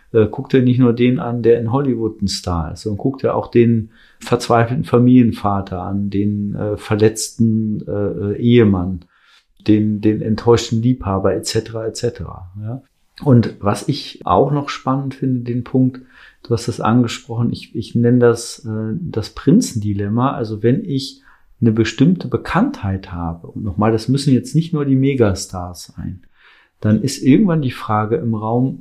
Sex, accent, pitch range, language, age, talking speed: male, German, 105-130 Hz, German, 40-59, 165 wpm